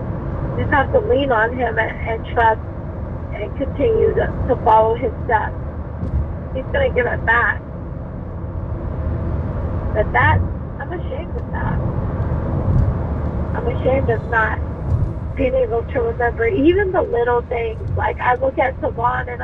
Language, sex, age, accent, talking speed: English, female, 40-59, American, 140 wpm